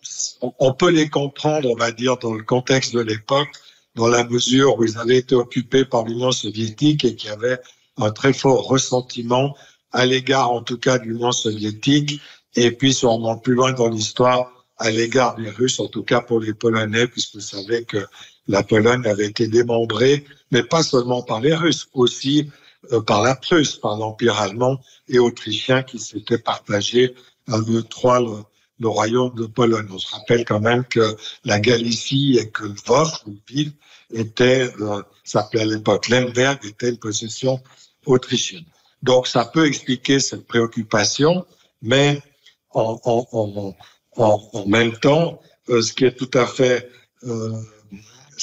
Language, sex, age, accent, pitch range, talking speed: French, male, 60-79, French, 115-130 Hz, 165 wpm